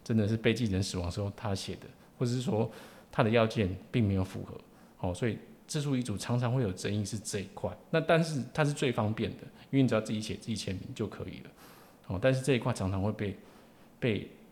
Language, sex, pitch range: Chinese, male, 100-125 Hz